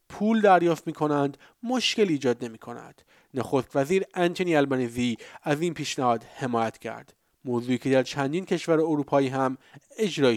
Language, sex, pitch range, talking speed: Persian, male, 125-165 Hz, 140 wpm